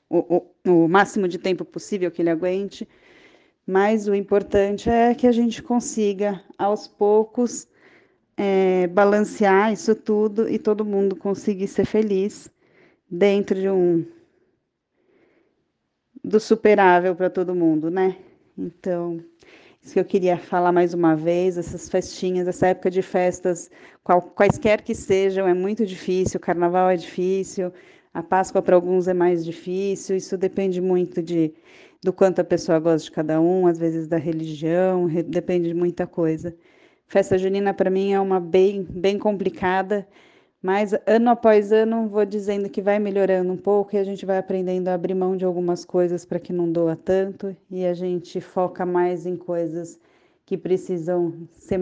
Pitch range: 175-205 Hz